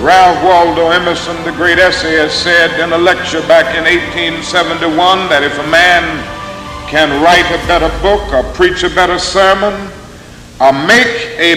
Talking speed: 155 wpm